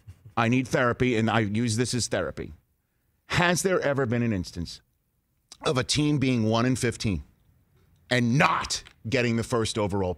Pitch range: 105-145 Hz